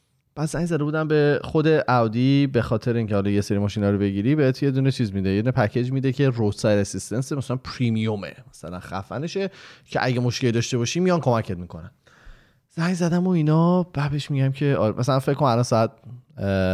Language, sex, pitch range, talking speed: Persian, male, 105-150 Hz, 185 wpm